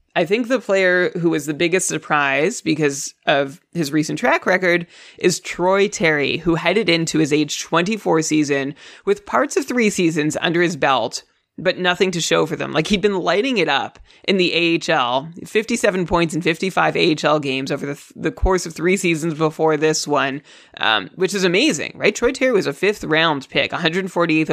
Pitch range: 155-185 Hz